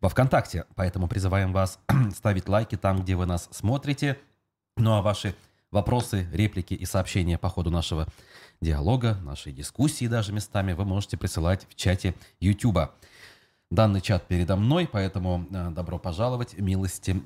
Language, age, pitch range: Russian, 30-49, 90-110 Hz